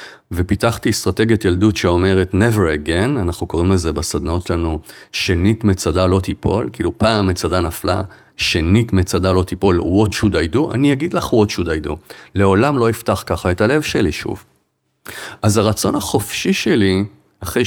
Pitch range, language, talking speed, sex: 90-115 Hz, Hebrew, 160 wpm, male